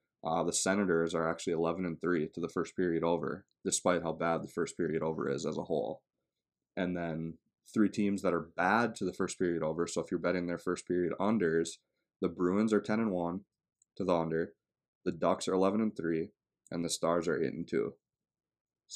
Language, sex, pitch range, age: English, male, 85-100 Hz, 20-39